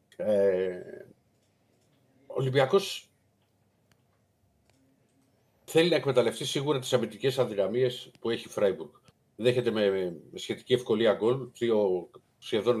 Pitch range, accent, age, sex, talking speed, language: 110-150 Hz, native, 50-69, male, 95 wpm, Greek